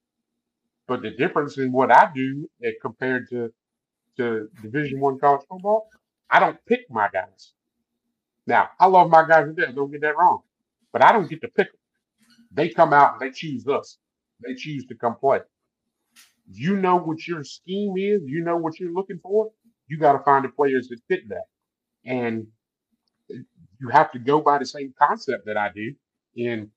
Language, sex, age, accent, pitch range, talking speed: English, male, 50-69, American, 125-165 Hz, 185 wpm